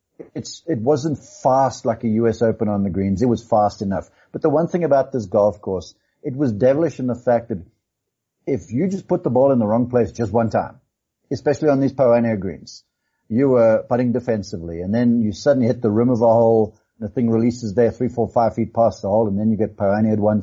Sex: male